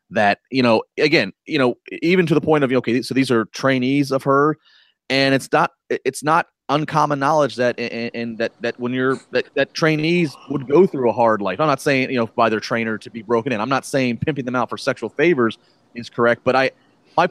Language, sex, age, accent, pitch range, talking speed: English, male, 30-49, American, 115-150 Hz, 230 wpm